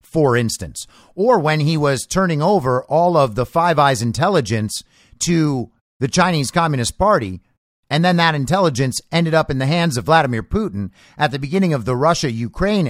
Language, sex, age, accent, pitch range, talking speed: English, male, 50-69, American, 120-170 Hz, 170 wpm